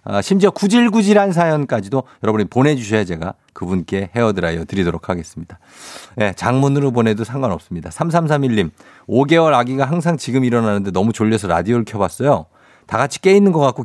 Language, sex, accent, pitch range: Korean, male, native, 100-145 Hz